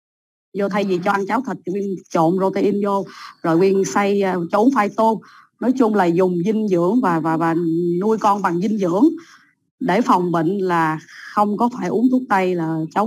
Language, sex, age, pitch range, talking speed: Vietnamese, female, 20-39, 180-230 Hz, 200 wpm